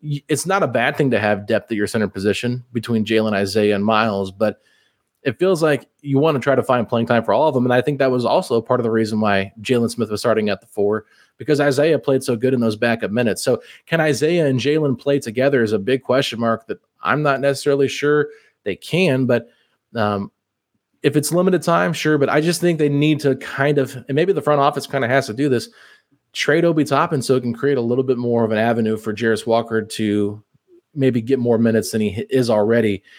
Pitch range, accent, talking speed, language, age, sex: 110-145 Hz, American, 240 wpm, English, 20-39, male